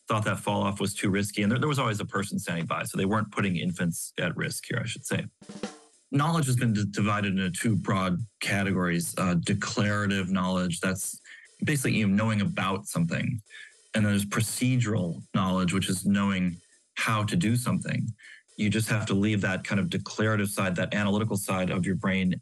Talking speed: 200 wpm